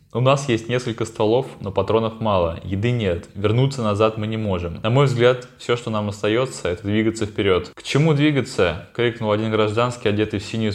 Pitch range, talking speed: 100-115 Hz, 195 wpm